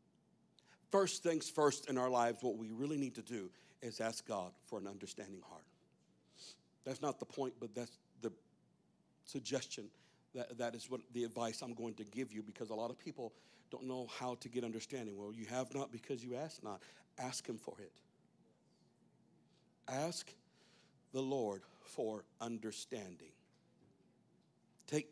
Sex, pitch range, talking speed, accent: male, 110-130 Hz, 160 wpm, American